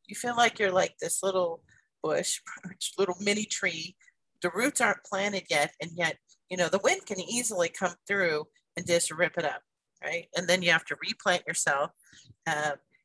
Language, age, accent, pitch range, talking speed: English, 40-59, American, 180-220 Hz, 185 wpm